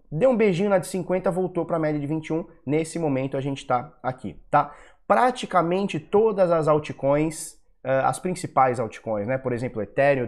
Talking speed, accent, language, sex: 180 wpm, Brazilian, Portuguese, male